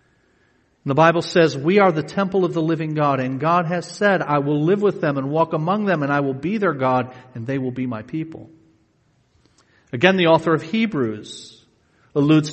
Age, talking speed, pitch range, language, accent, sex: 50-69, 200 wpm, 130-185 Hz, English, American, male